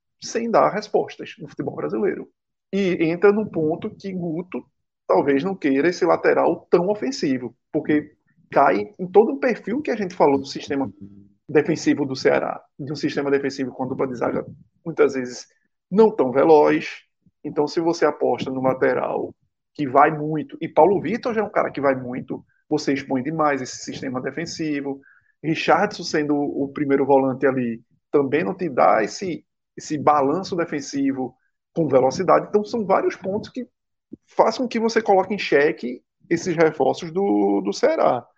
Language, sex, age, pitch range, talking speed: Portuguese, male, 20-39, 140-190 Hz, 165 wpm